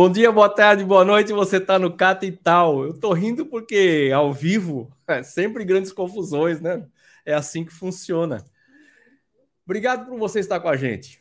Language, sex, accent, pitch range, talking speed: Portuguese, male, Brazilian, 125-175 Hz, 175 wpm